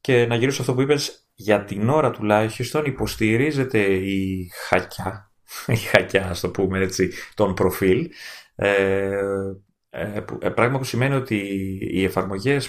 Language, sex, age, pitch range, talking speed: Greek, male, 30-49, 95-115 Hz, 130 wpm